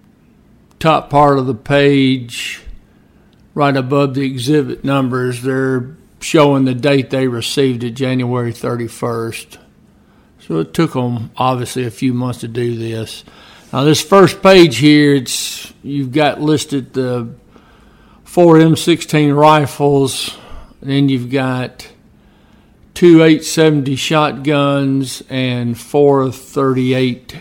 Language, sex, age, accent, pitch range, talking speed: English, male, 60-79, American, 120-140 Hz, 115 wpm